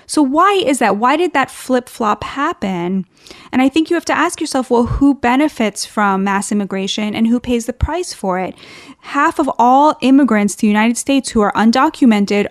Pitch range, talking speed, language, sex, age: 210-275 Hz, 195 wpm, English, female, 10-29